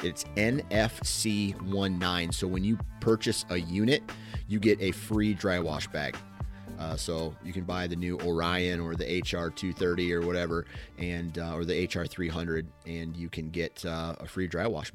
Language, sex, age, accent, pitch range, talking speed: English, male, 30-49, American, 90-110 Hz, 170 wpm